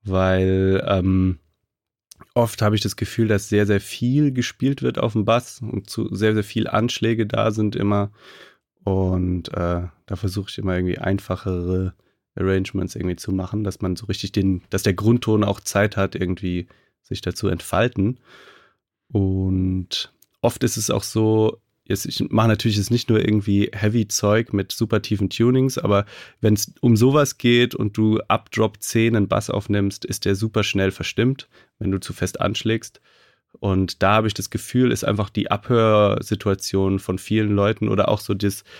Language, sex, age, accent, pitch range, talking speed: German, male, 30-49, German, 95-110 Hz, 175 wpm